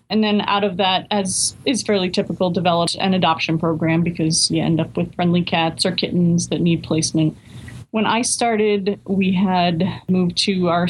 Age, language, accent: 20-39, English, American